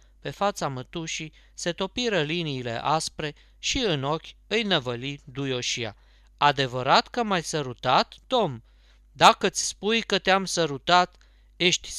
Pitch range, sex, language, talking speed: 130-205 Hz, male, Romanian, 120 wpm